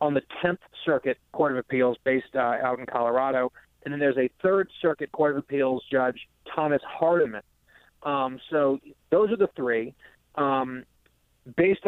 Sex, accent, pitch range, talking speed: male, American, 125-150 Hz, 160 wpm